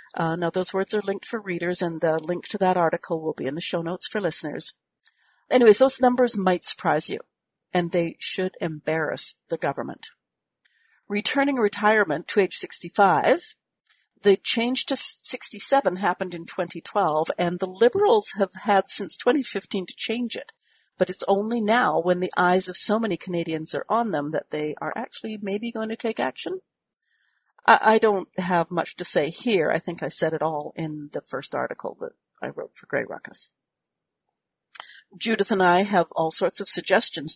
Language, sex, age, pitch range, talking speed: English, female, 50-69, 165-225 Hz, 175 wpm